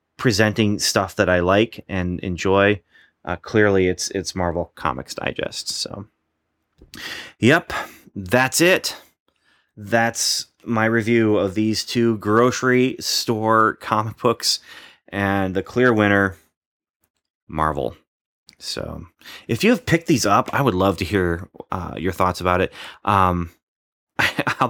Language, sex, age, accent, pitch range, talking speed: English, male, 30-49, American, 90-110 Hz, 125 wpm